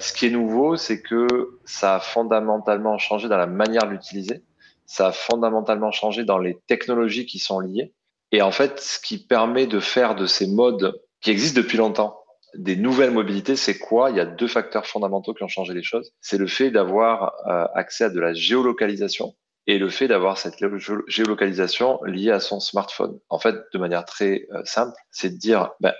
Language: French